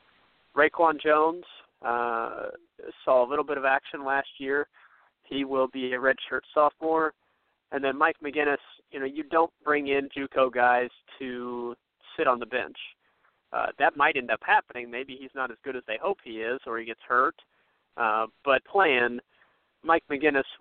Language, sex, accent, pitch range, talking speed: English, male, American, 125-145 Hz, 170 wpm